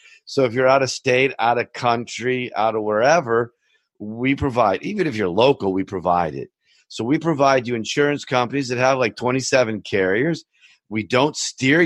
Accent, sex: American, male